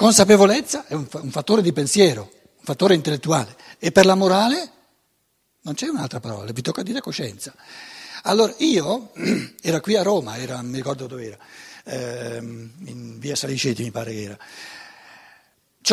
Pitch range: 150-215 Hz